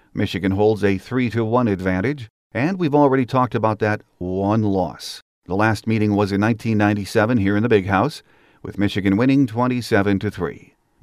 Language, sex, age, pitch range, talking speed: English, male, 50-69, 100-115 Hz, 150 wpm